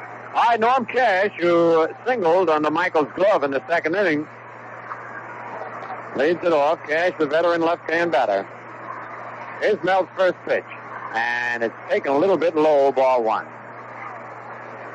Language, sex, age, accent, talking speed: English, male, 60-79, American, 135 wpm